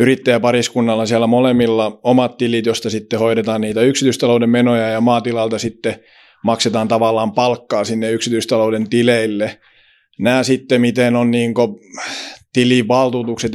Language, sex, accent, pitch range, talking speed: Finnish, male, native, 115-125 Hz, 120 wpm